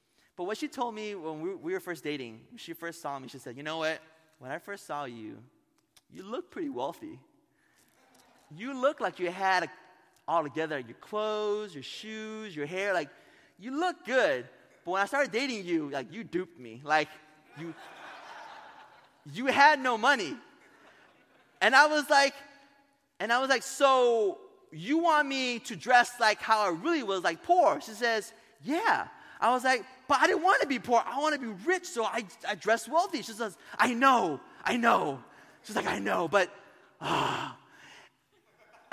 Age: 30-49